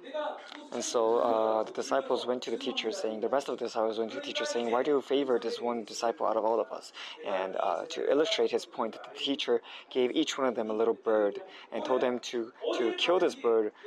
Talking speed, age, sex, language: 240 wpm, 20-39, male, English